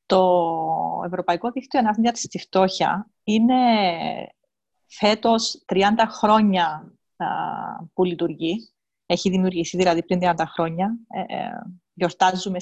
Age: 30-49